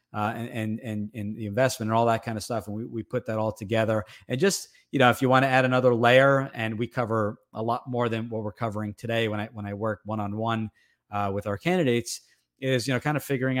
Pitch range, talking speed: 105-120 Hz, 250 wpm